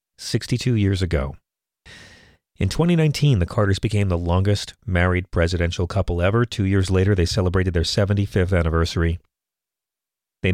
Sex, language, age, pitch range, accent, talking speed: male, English, 40-59, 85-110 Hz, American, 130 wpm